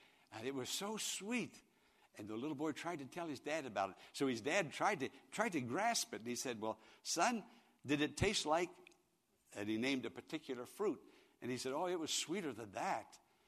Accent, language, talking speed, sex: American, English, 220 wpm, male